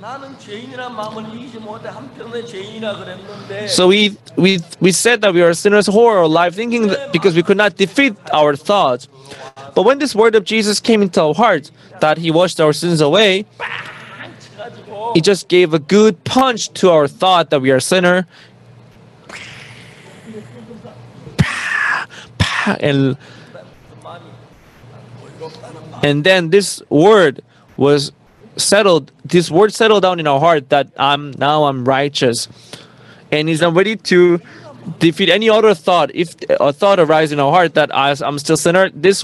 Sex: male